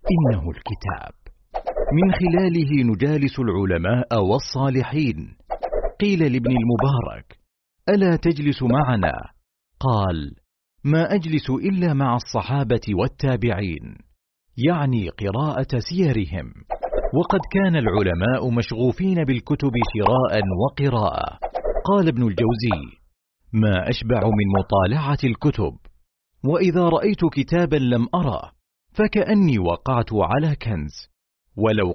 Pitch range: 105-150 Hz